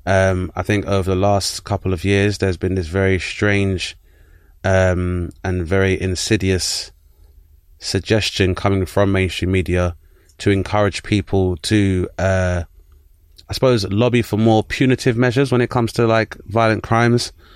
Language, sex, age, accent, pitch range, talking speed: English, male, 20-39, British, 90-105 Hz, 145 wpm